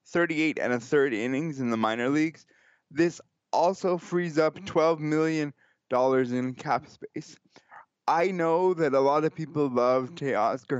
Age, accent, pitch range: 20-39, American, 130-165 Hz